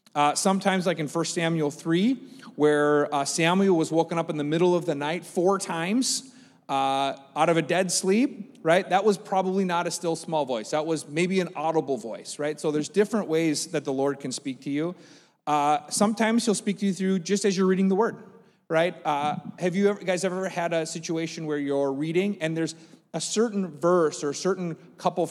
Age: 30-49